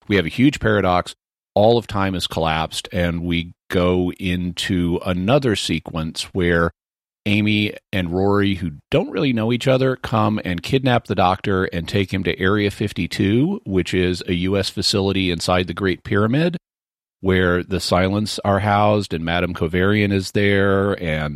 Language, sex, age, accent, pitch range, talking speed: English, male, 40-59, American, 90-105 Hz, 160 wpm